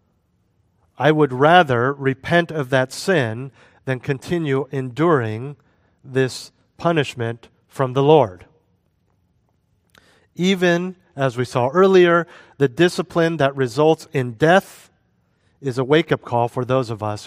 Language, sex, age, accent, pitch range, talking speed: English, male, 40-59, American, 120-155 Hz, 120 wpm